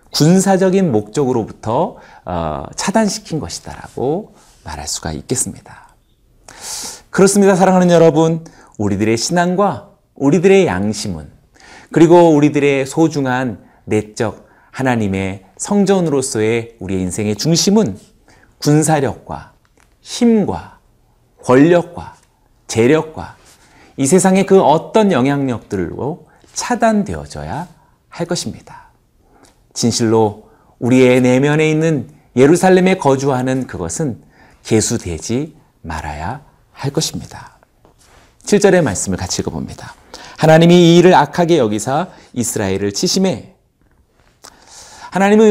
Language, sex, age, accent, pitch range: Korean, male, 40-59, native, 110-180 Hz